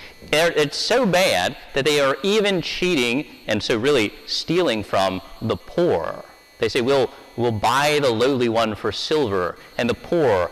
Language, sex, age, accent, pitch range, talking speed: English, male, 30-49, American, 115-150 Hz, 160 wpm